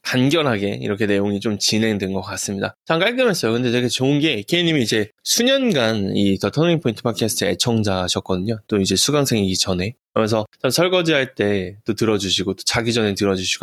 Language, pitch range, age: Korean, 105-150 Hz, 20-39